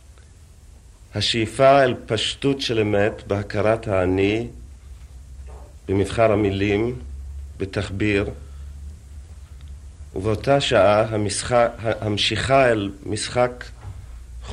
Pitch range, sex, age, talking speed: 80-115 Hz, male, 40-59, 65 wpm